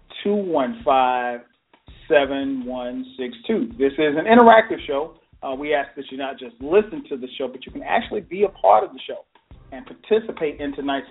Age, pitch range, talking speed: 40-59, 135-205 Hz, 200 wpm